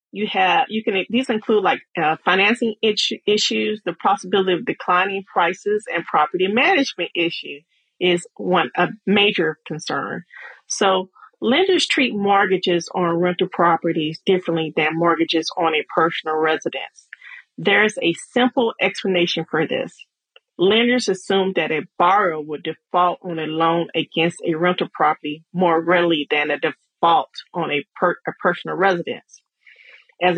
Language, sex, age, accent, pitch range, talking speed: English, female, 40-59, American, 170-220 Hz, 140 wpm